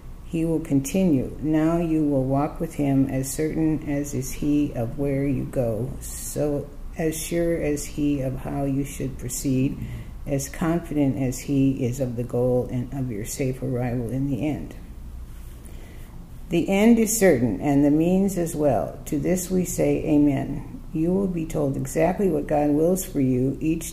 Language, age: English, 60-79